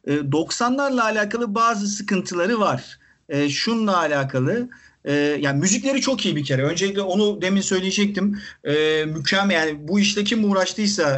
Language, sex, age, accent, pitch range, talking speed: Turkish, male, 50-69, native, 150-225 Hz, 140 wpm